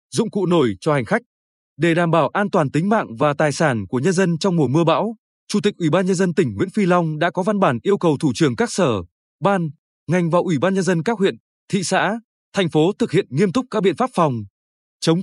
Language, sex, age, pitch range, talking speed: Vietnamese, male, 20-39, 155-205 Hz, 255 wpm